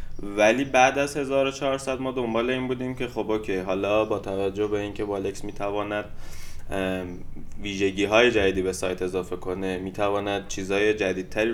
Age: 20-39